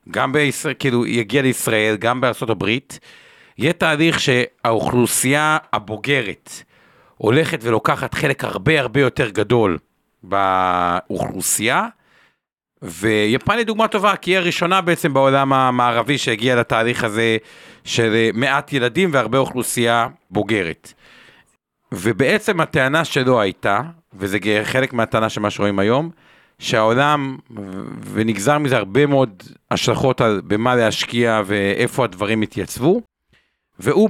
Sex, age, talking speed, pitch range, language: male, 50-69, 110 wpm, 110-145 Hz, Hebrew